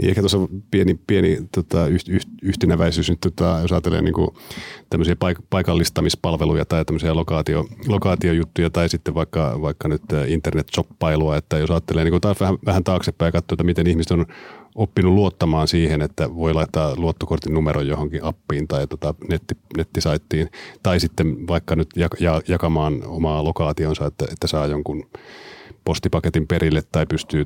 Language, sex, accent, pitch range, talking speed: Finnish, male, native, 80-90 Hz, 145 wpm